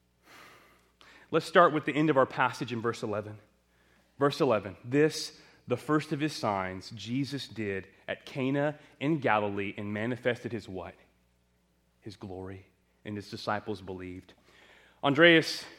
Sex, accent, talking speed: male, American, 135 wpm